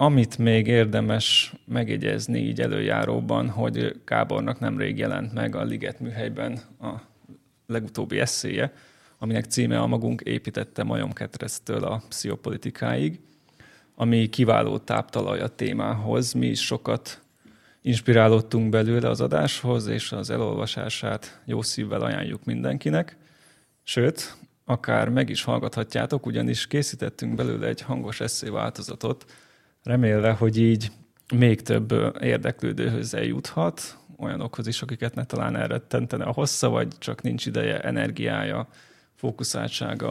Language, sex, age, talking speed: Hungarian, male, 30-49, 115 wpm